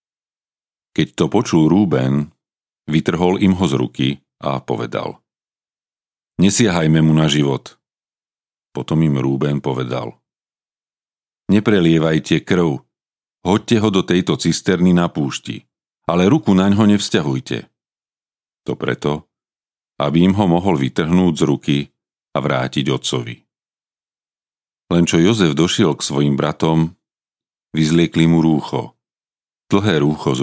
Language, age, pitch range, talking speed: Slovak, 40-59, 75-90 Hz, 115 wpm